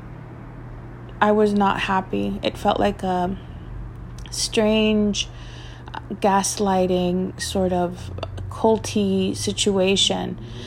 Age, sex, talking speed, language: 30-49, female, 80 wpm, English